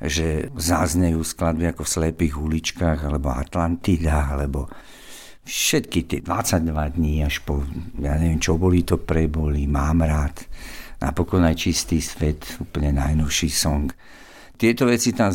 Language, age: Slovak, 60-79